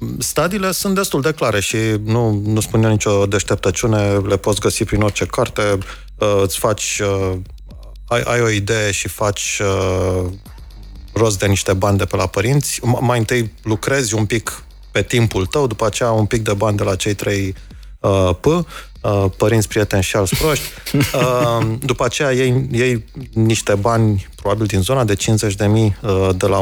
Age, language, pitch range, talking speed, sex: 30-49, Romanian, 95-110 Hz, 170 wpm, male